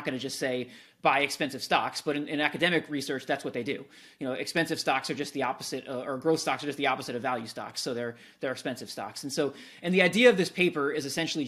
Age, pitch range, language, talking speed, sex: 30-49, 140-175 Hz, English, 260 wpm, male